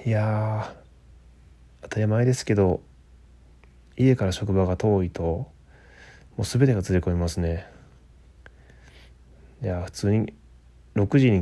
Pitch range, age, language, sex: 75-95 Hz, 20-39, Japanese, male